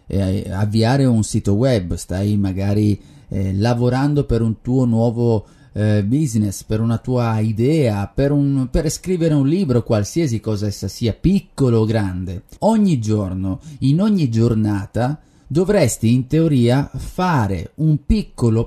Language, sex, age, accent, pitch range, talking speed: Italian, male, 30-49, native, 105-140 Hz, 140 wpm